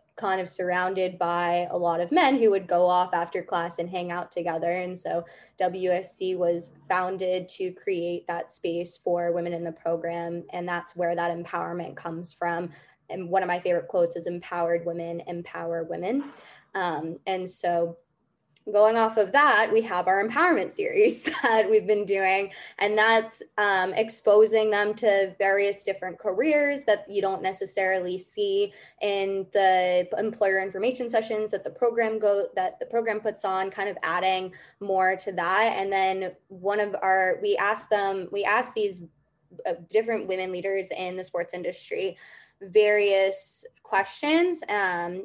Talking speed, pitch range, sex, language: 160 wpm, 175-205 Hz, female, English